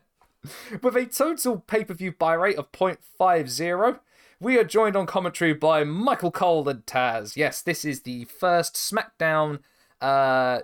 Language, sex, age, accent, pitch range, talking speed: English, male, 20-39, British, 120-175 Hz, 140 wpm